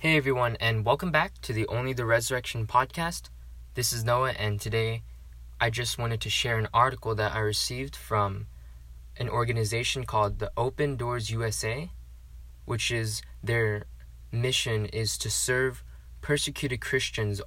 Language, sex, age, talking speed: English, male, 20-39, 150 wpm